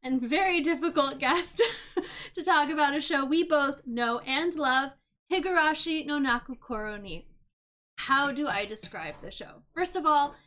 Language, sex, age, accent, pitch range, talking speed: English, female, 10-29, American, 240-325 Hz, 155 wpm